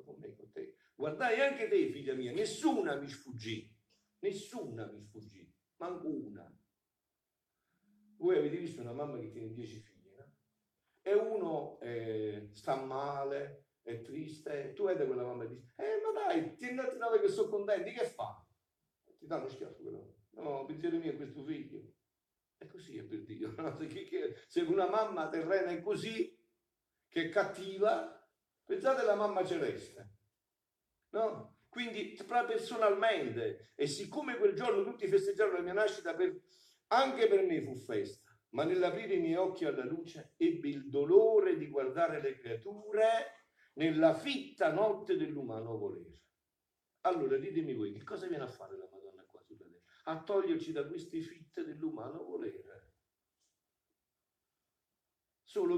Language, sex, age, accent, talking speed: Italian, male, 50-69, native, 145 wpm